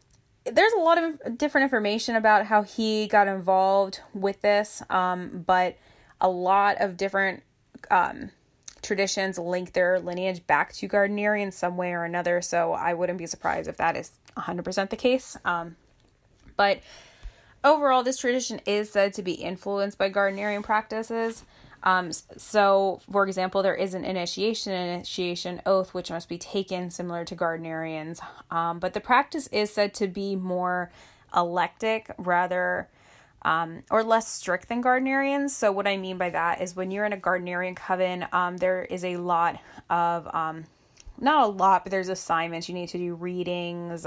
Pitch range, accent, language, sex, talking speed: 175-205 Hz, American, English, female, 165 wpm